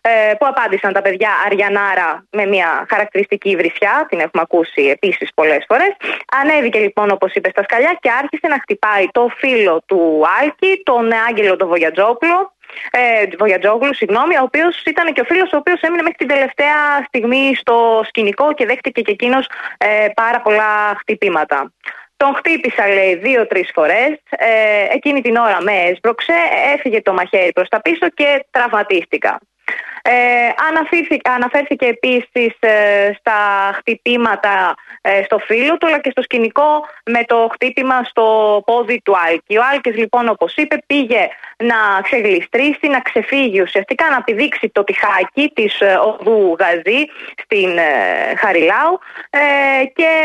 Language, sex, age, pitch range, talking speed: Greek, female, 20-39, 210-290 Hz, 145 wpm